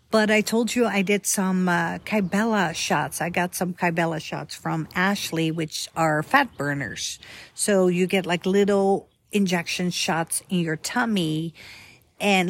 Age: 50-69